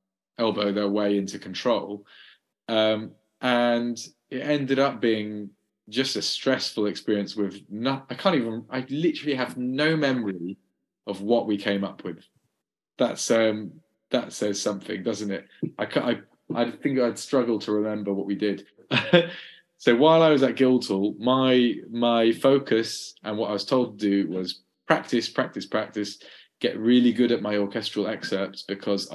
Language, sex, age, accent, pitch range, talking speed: English, male, 20-39, British, 100-125 Hz, 160 wpm